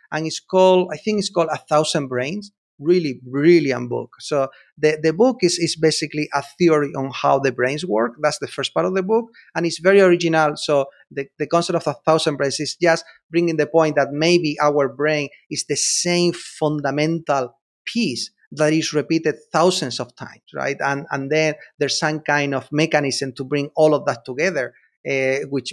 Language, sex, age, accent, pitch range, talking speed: English, male, 30-49, Spanish, 135-165 Hz, 195 wpm